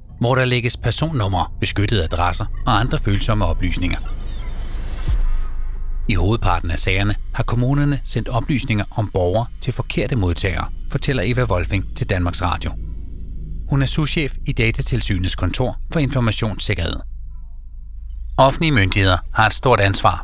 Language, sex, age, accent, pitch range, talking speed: Danish, male, 30-49, native, 85-120 Hz, 130 wpm